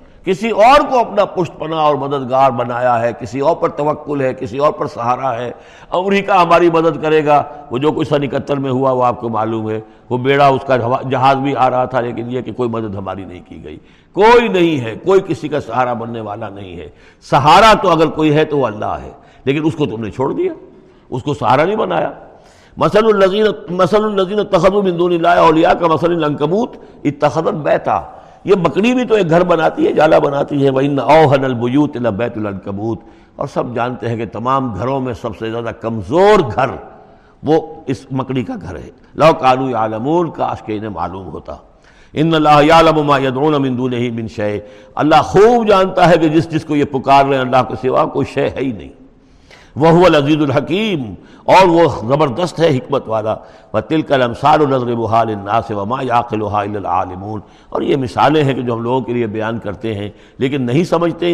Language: Urdu